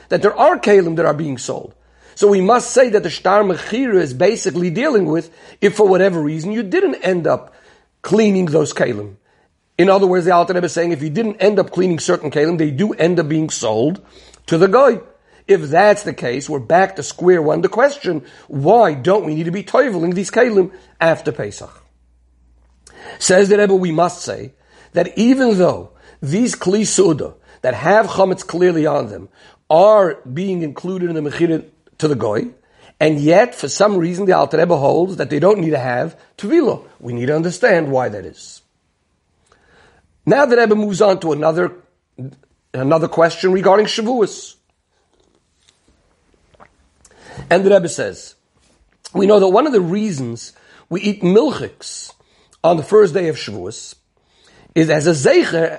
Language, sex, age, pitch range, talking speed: English, male, 50-69, 155-205 Hz, 175 wpm